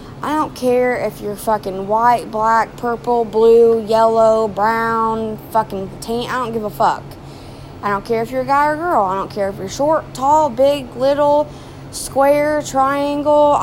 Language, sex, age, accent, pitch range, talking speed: English, female, 20-39, American, 205-270 Hz, 170 wpm